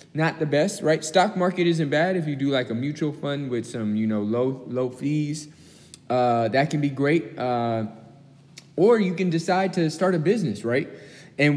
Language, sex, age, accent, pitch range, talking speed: English, male, 20-39, American, 125-165 Hz, 195 wpm